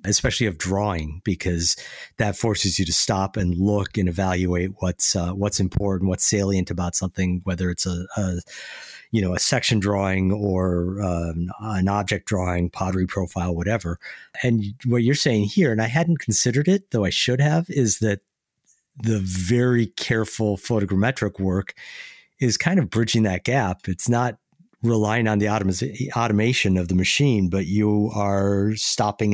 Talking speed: 160 wpm